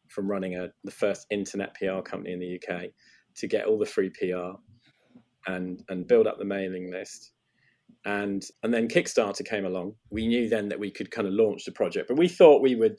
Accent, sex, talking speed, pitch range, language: British, male, 215 wpm, 95-125 Hz, English